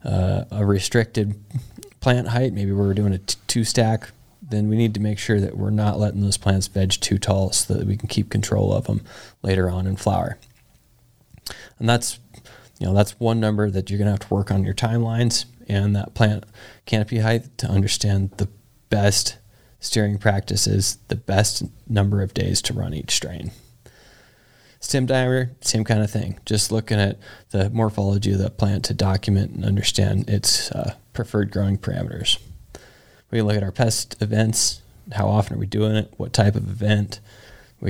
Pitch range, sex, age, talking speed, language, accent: 100-115 Hz, male, 20-39, 180 wpm, English, American